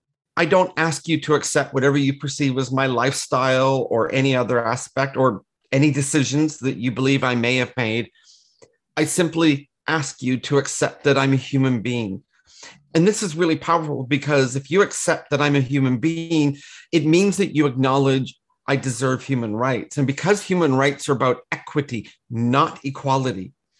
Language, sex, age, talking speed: English, male, 40-59, 175 wpm